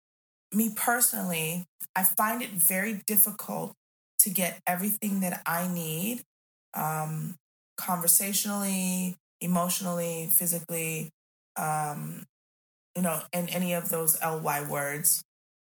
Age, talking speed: 20-39, 100 wpm